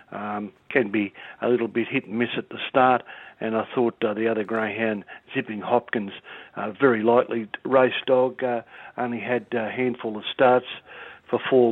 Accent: Australian